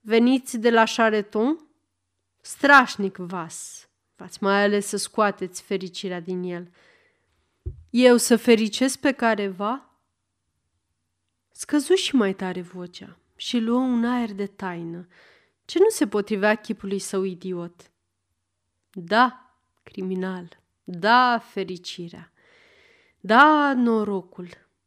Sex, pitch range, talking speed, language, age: female, 180-245 Hz, 105 wpm, Romanian, 30-49